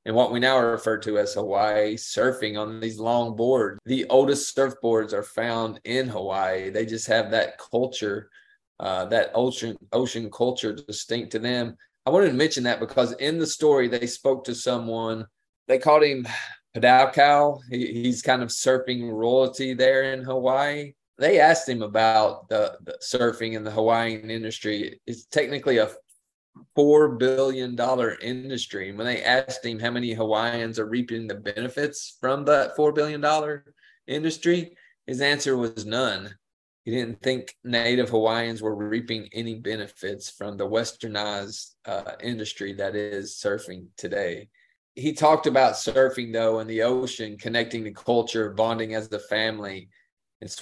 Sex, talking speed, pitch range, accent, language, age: male, 155 wpm, 110-130 Hz, American, English, 20-39